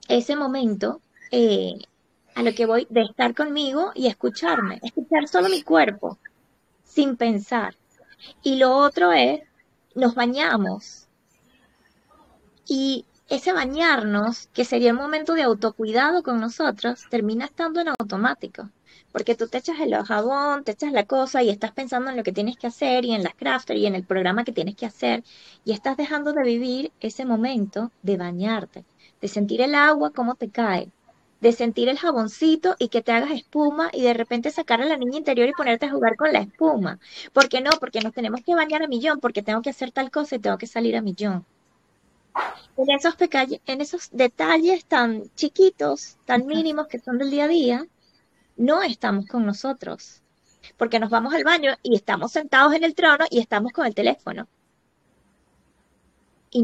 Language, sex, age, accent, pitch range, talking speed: Spanish, female, 20-39, American, 230-300 Hz, 180 wpm